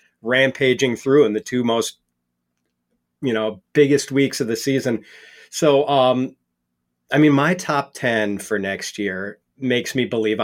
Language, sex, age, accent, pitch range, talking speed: English, male, 40-59, American, 110-135 Hz, 150 wpm